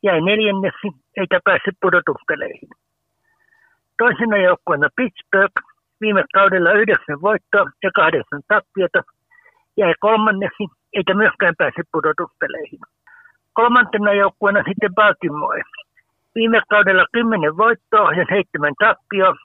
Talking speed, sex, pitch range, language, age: 100 wpm, male, 185-225 Hz, Finnish, 60-79